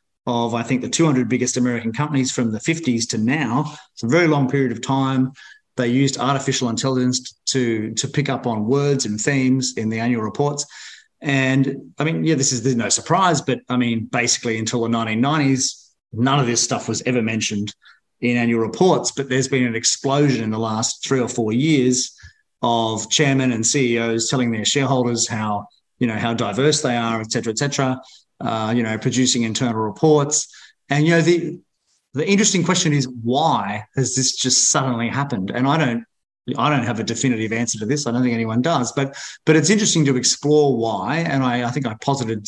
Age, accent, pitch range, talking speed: 30-49, Australian, 115-140 Hz, 200 wpm